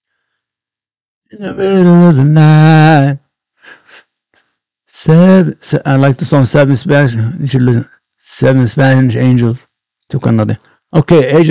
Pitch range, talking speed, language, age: 125-175 Hz, 125 wpm, English, 60-79